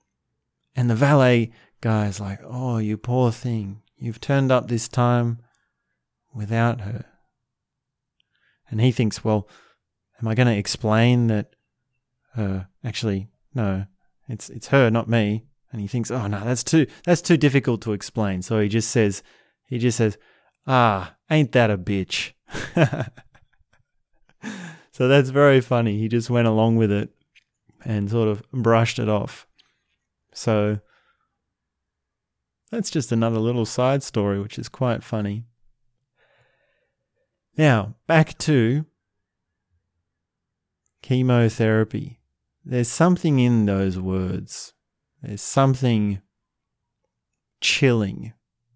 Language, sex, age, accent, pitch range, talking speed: English, male, 20-39, Australian, 105-125 Hz, 120 wpm